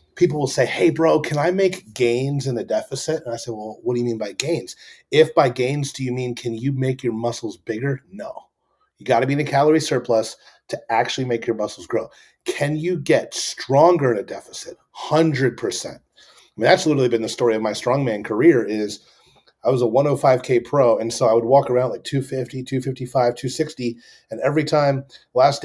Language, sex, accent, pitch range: English, male, American, 120-150 Hz